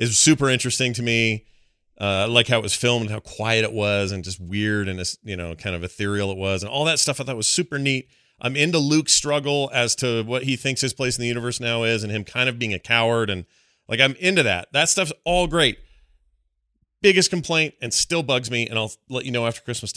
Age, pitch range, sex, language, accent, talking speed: 30-49, 105-130 Hz, male, English, American, 250 wpm